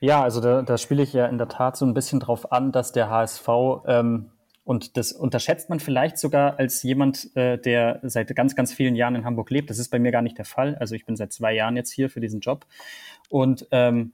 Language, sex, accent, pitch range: German, male, German, 120-140 Hz